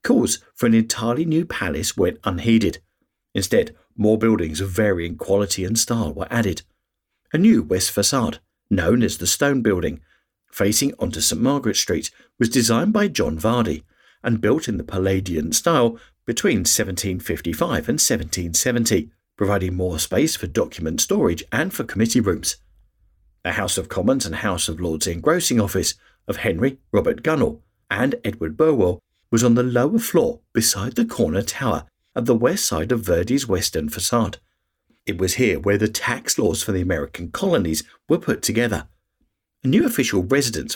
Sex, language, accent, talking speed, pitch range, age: male, English, British, 160 wpm, 90-120 Hz, 50-69